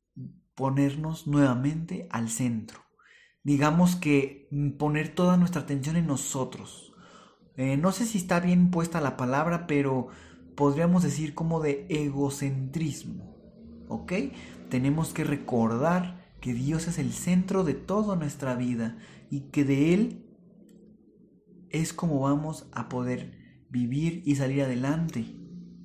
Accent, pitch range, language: Mexican, 130-180 Hz, Spanish